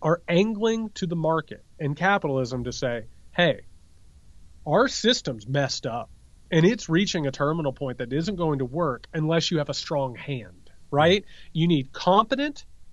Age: 30-49